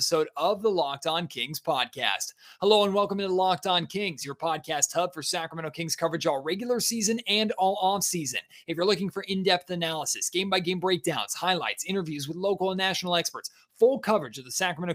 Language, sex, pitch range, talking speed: English, male, 160-190 Hz, 190 wpm